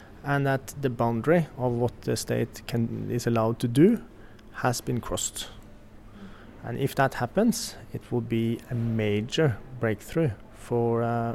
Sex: male